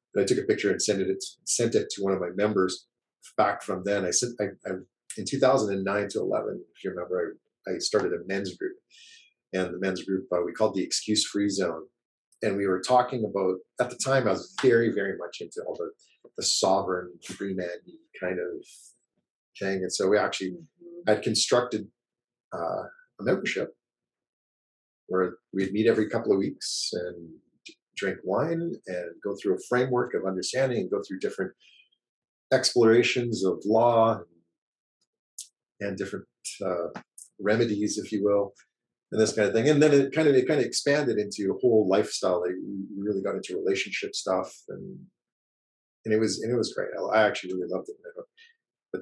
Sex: male